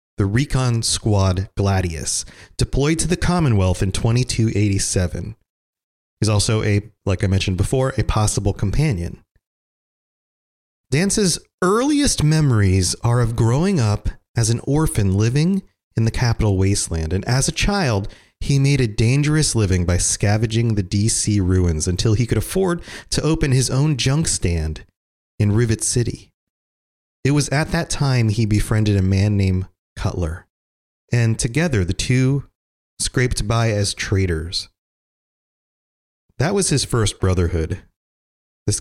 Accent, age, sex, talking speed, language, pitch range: American, 30-49, male, 135 wpm, English, 95-130 Hz